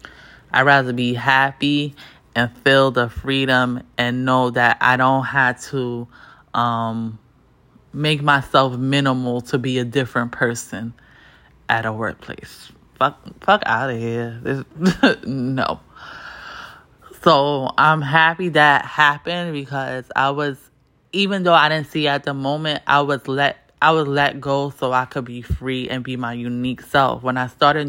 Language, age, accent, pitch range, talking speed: English, 20-39, American, 125-150 Hz, 150 wpm